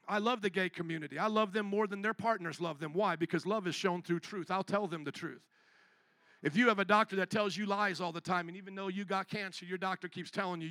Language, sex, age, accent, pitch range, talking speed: English, male, 50-69, American, 180-225 Hz, 275 wpm